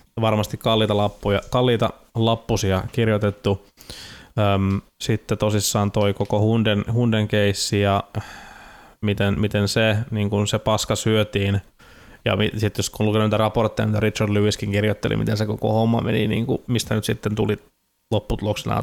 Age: 20-39